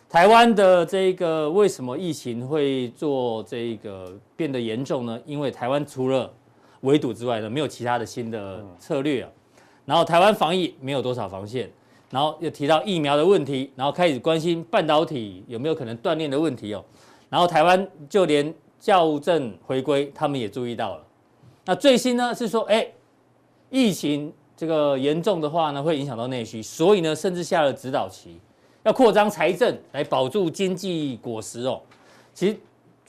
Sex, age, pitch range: male, 40-59, 125-175 Hz